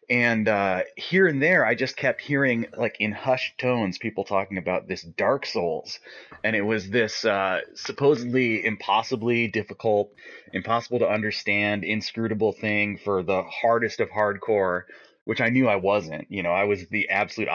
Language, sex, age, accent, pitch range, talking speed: English, male, 30-49, American, 100-125 Hz, 165 wpm